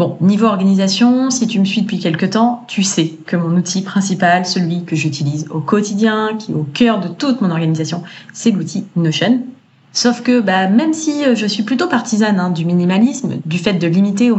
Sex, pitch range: female, 175-220 Hz